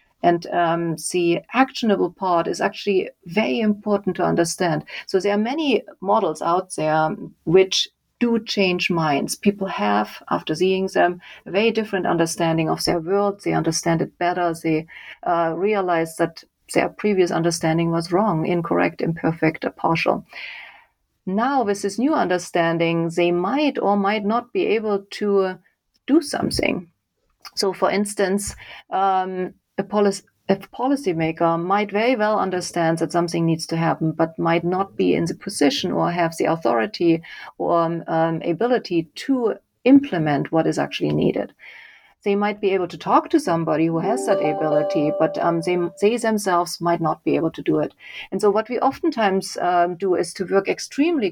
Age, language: 30-49, English